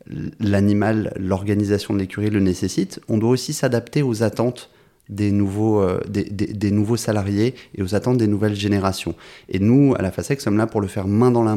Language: French